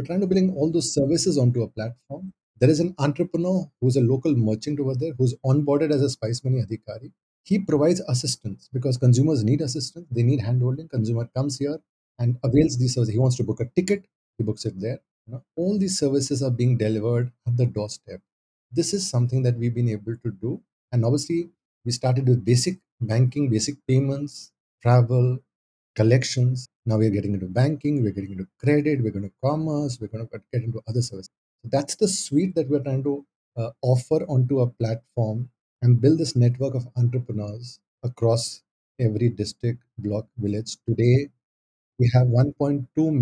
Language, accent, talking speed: English, Indian, 185 wpm